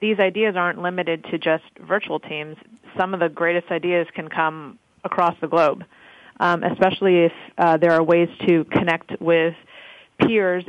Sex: female